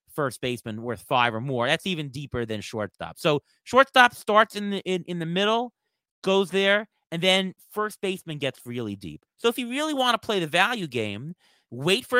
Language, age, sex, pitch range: English, 30-49, male, 135-190 Hz